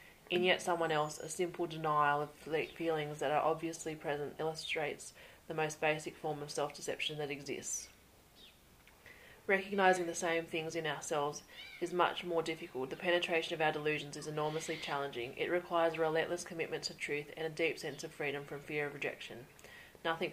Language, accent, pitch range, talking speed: English, Australian, 145-165 Hz, 170 wpm